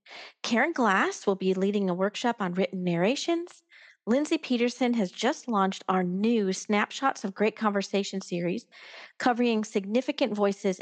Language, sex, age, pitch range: English, female, 40-59, 190-240 Hz